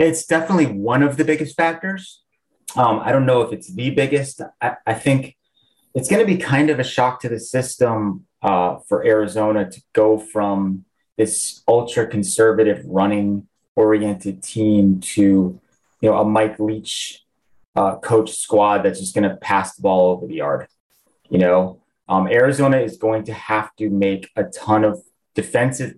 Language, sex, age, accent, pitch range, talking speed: English, male, 20-39, American, 100-130 Hz, 170 wpm